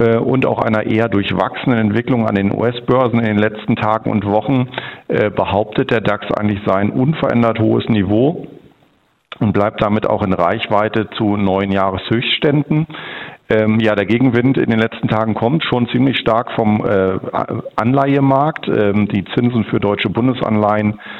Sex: male